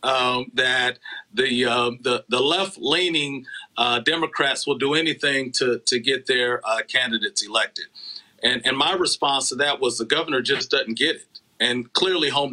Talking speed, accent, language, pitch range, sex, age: 170 wpm, American, English, 120-170 Hz, male, 40-59